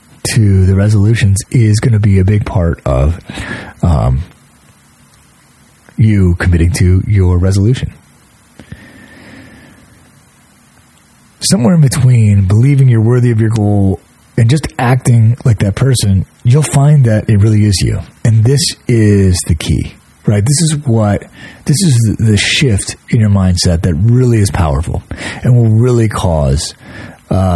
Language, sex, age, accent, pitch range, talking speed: English, male, 30-49, American, 95-125 Hz, 140 wpm